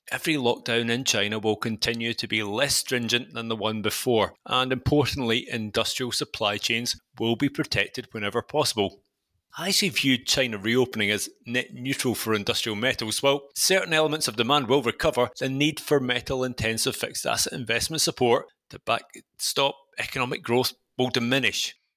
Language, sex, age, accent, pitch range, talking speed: English, male, 30-49, British, 110-140 Hz, 155 wpm